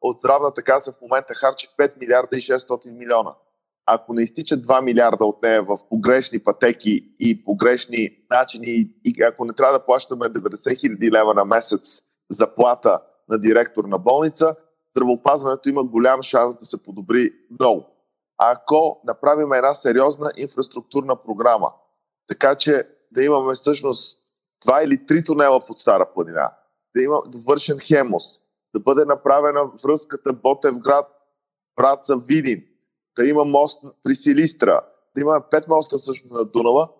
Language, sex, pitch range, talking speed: Bulgarian, male, 125-150 Hz, 145 wpm